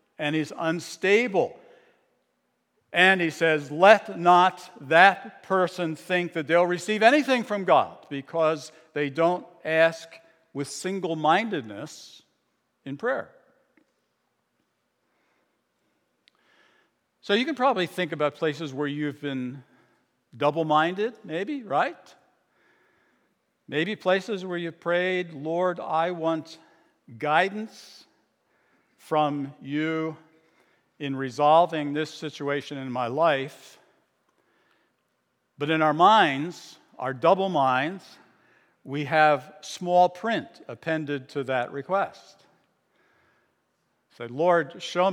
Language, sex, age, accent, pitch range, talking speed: English, male, 60-79, American, 145-180 Hz, 100 wpm